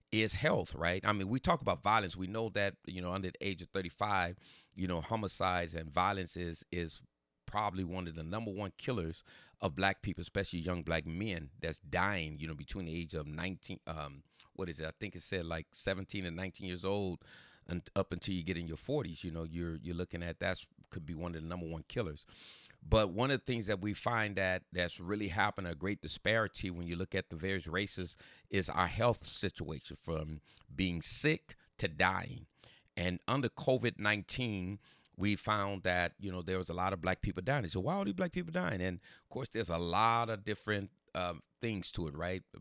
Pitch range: 85-100 Hz